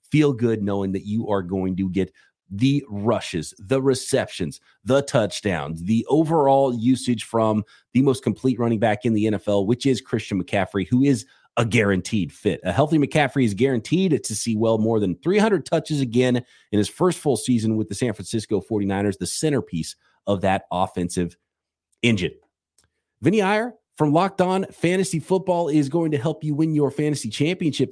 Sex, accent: male, American